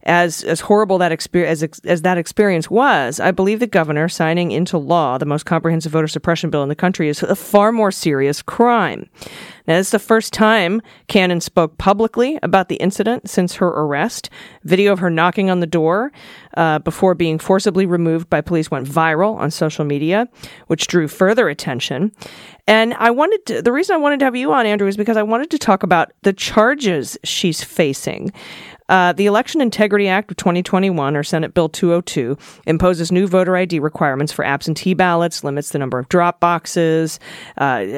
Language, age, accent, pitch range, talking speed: English, 40-59, American, 160-205 Hz, 190 wpm